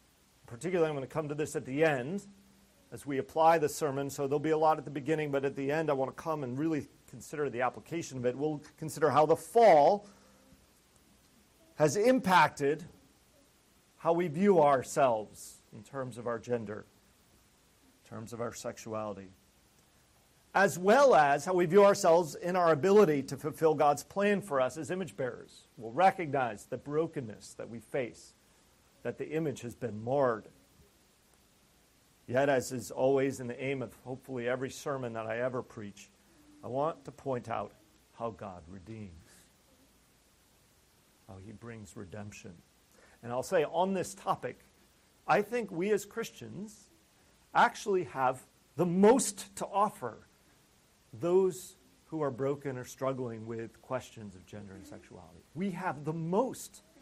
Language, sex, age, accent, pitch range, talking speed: English, male, 40-59, American, 115-165 Hz, 160 wpm